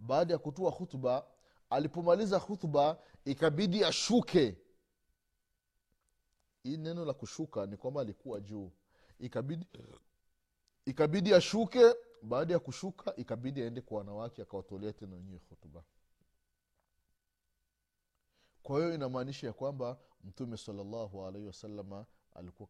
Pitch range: 95-150 Hz